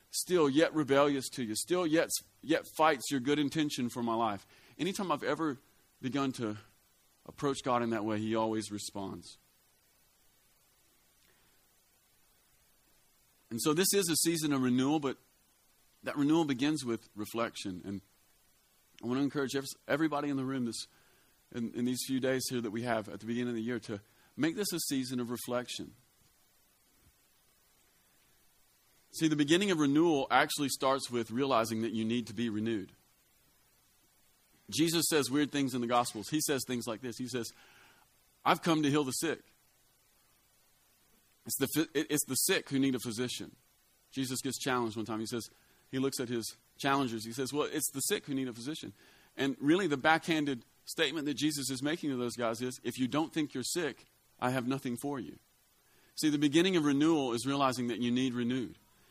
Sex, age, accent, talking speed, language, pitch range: male, 40-59, American, 175 wpm, English, 115-150 Hz